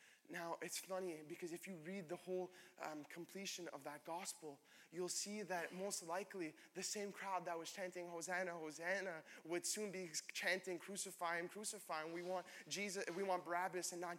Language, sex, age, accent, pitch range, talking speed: English, male, 20-39, American, 185-225 Hz, 180 wpm